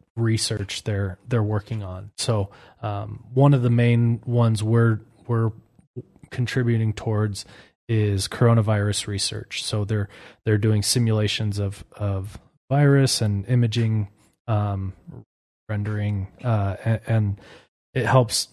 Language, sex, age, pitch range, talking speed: English, male, 20-39, 100-120 Hz, 115 wpm